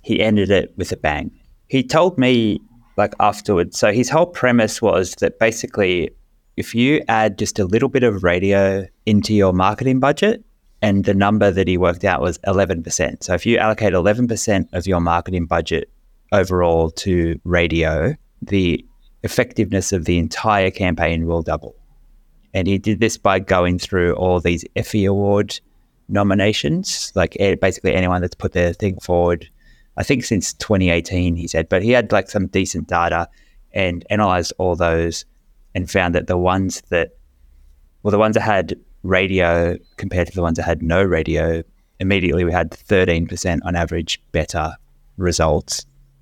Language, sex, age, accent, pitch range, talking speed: English, male, 20-39, Australian, 85-105 Hz, 160 wpm